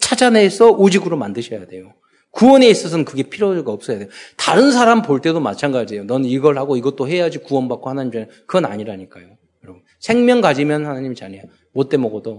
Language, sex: Korean, male